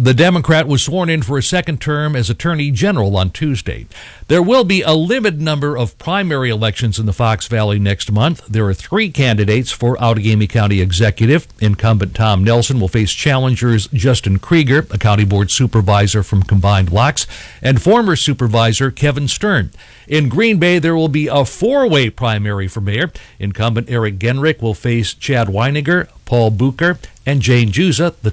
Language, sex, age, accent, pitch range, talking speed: English, male, 60-79, American, 110-150 Hz, 170 wpm